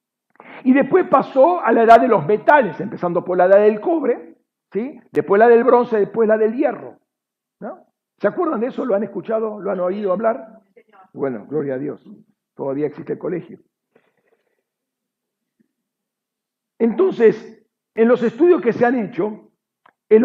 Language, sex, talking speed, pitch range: Spanish, male, 150 wpm, 175-230 Hz